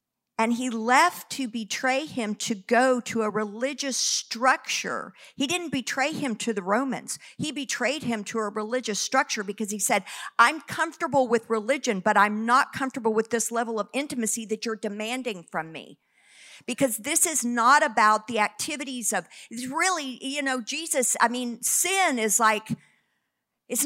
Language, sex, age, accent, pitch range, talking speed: English, female, 50-69, American, 245-335 Hz, 165 wpm